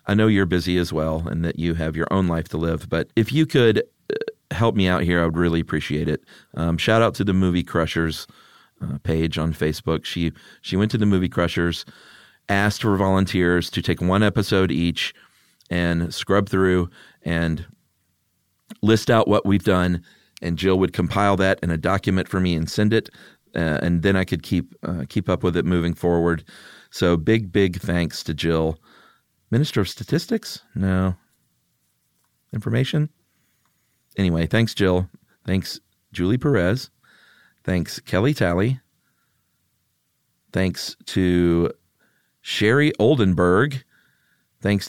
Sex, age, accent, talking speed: male, 40-59, American, 150 wpm